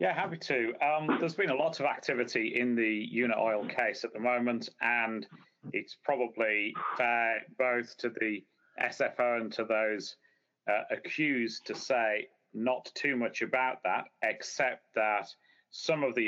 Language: English